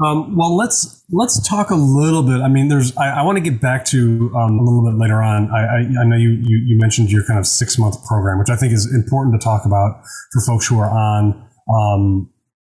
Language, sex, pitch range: English, male, 110-135 Hz